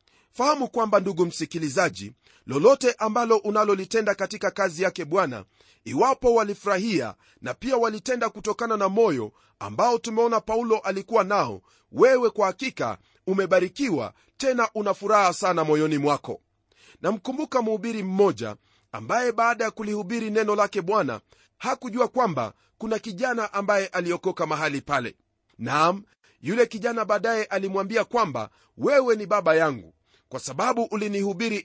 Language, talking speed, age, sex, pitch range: Swahili, 125 wpm, 40-59, male, 180-230 Hz